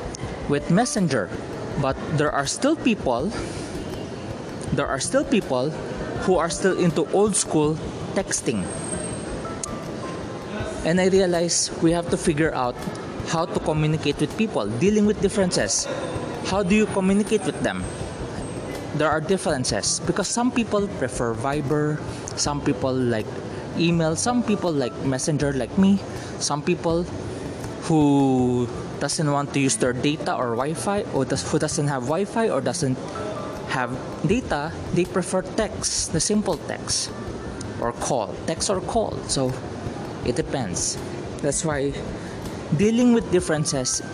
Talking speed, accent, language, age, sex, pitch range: 130 wpm, Filipino, English, 20-39, male, 130-180 Hz